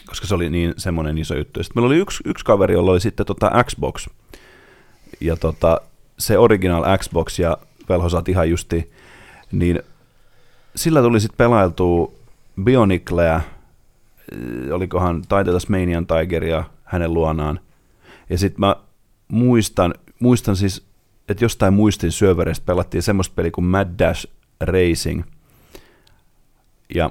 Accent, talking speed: native, 130 wpm